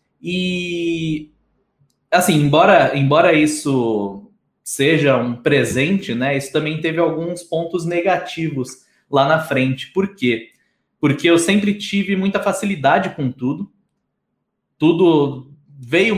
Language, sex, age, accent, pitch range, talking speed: Portuguese, male, 20-39, Brazilian, 135-185 Hz, 110 wpm